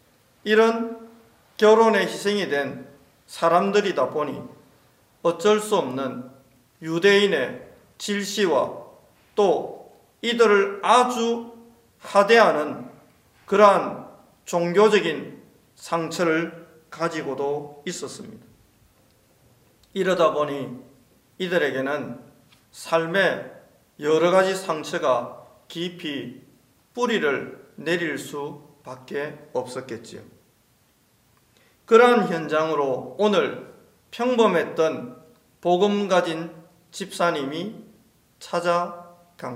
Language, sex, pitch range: Korean, male, 145-205 Hz